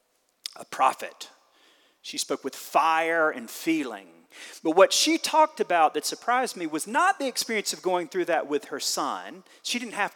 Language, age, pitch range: English, 40-59, 175-270 Hz